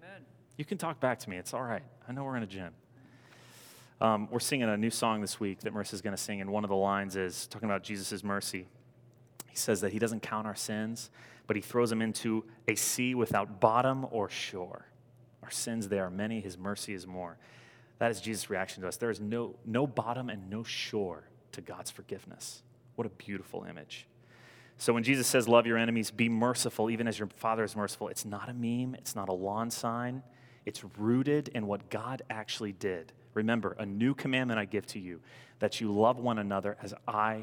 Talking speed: 215 wpm